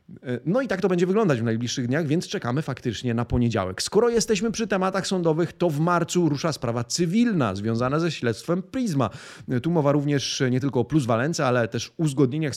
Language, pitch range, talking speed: Polish, 120-170 Hz, 195 wpm